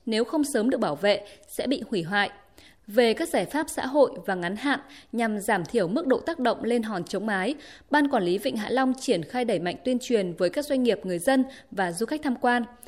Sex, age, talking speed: female, 20-39, 245 wpm